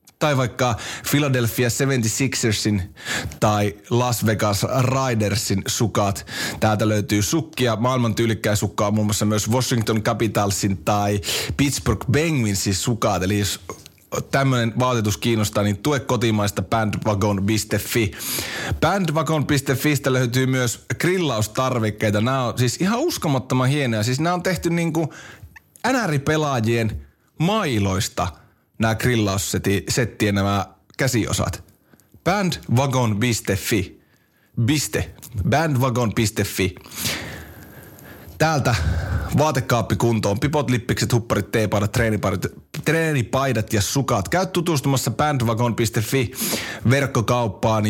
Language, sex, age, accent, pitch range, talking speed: Finnish, male, 30-49, native, 105-130 Hz, 90 wpm